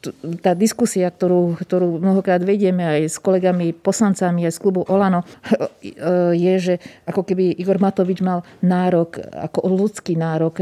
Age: 40-59